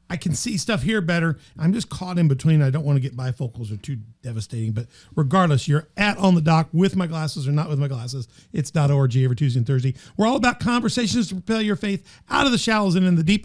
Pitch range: 145-205 Hz